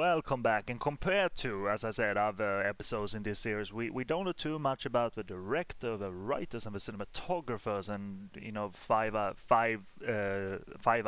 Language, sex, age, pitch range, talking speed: English, male, 30-49, 100-125 Hz, 190 wpm